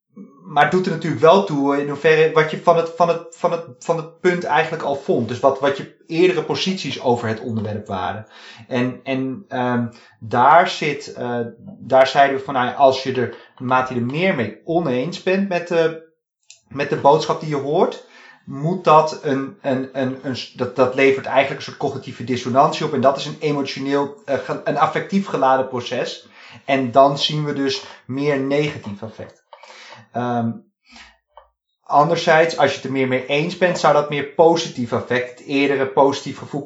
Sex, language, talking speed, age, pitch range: male, Dutch, 185 wpm, 30-49, 130-165 Hz